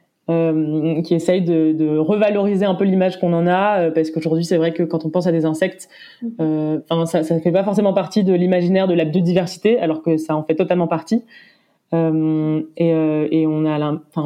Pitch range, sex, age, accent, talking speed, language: 160-195 Hz, female, 20-39, French, 200 wpm, French